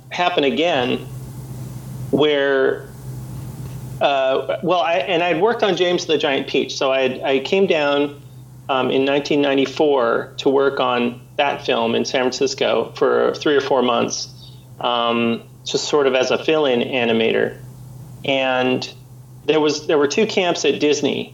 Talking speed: 150 wpm